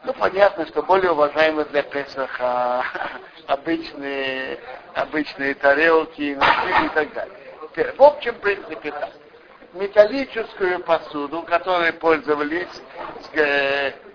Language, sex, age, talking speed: Russian, male, 60-79, 95 wpm